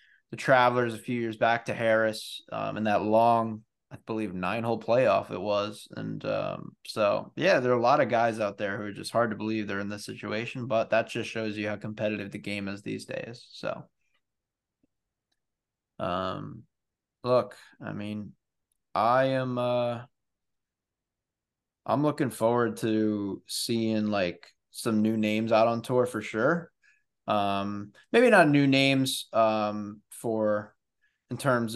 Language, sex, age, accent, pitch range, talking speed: English, male, 20-39, American, 110-125 Hz, 160 wpm